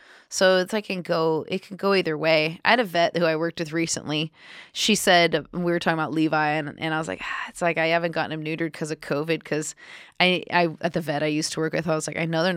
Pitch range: 150-170 Hz